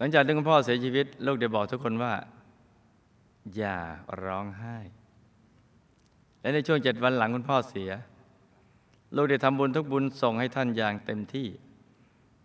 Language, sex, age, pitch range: Thai, male, 20-39, 105-130 Hz